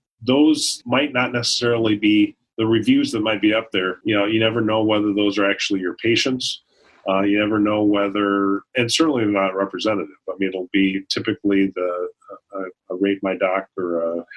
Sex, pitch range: male, 95-105 Hz